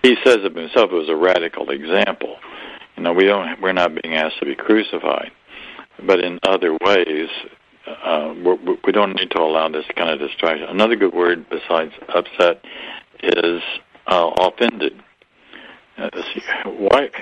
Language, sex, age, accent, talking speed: English, male, 60-79, American, 155 wpm